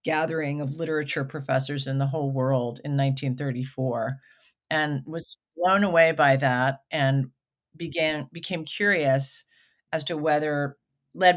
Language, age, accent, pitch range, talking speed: English, 40-59, American, 135-160 Hz, 125 wpm